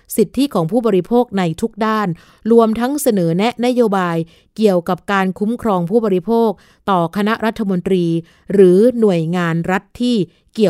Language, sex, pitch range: Thai, female, 175-215 Hz